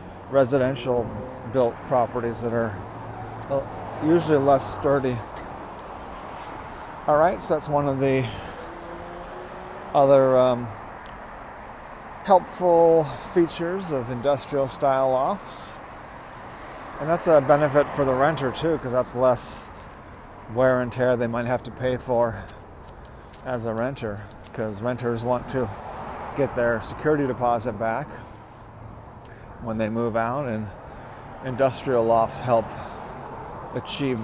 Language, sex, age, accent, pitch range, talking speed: English, male, 40-59, American, 115-145 Hz, 110 wpm